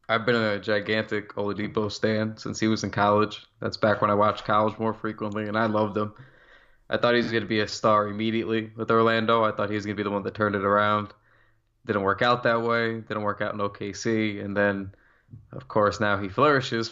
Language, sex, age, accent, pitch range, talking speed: English, male, 20-39, American, 105-115 Hz, 230 wpm